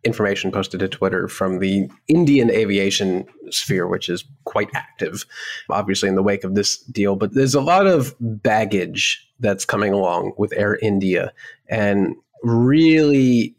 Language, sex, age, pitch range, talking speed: English, male, 30-49, 100-130 Hz, 150 wpm